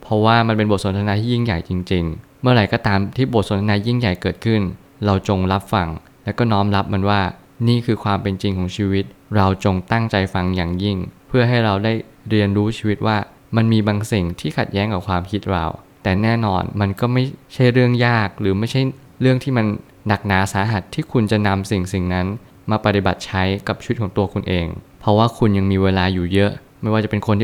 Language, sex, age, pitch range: Thai, male, 20-39, 95-115 Hz